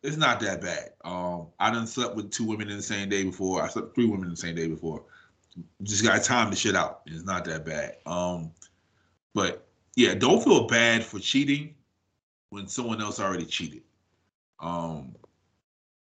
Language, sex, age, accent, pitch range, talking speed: English, male, 20-39, American, 90-115 Hz, 185 wpm